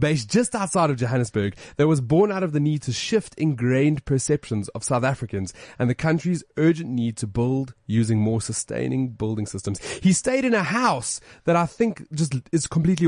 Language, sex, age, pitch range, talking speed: English, male, 30-49, 115-165 Hz, 195 wpm